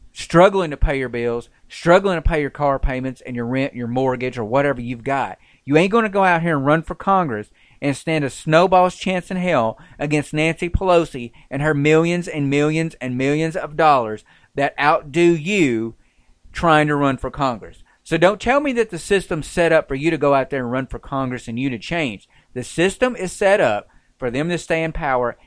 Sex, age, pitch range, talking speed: male, 40-59, 125-165 Hz, 215 wpm